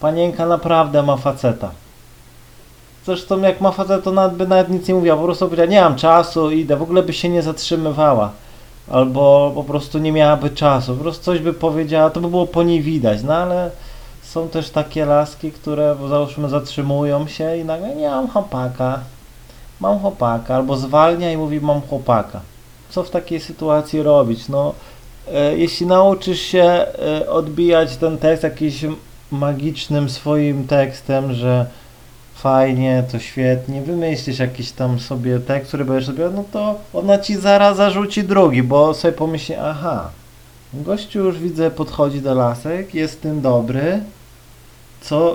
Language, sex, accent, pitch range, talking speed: Polish, male, native, 140-180 Hz, 160 wpm